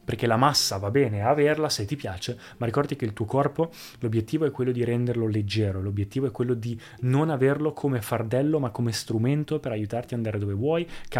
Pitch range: 115-140 Hz